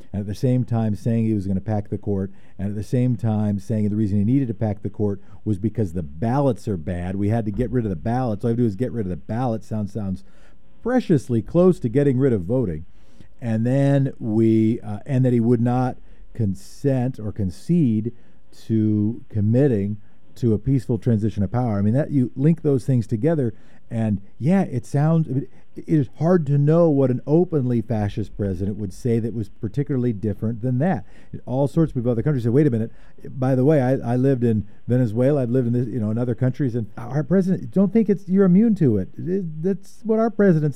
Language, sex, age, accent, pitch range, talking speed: English, male, 50-69, American, 105-140 Hz, 220 wpm